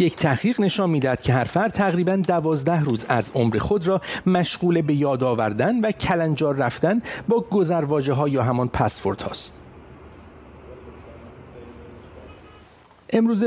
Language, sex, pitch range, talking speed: English, male, 130-190 Hz, 125 wpm